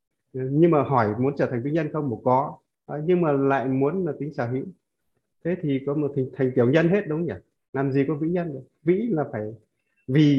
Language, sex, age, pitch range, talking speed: Vietnamese, male, 20-39, 110-145 Hz, 225 wpm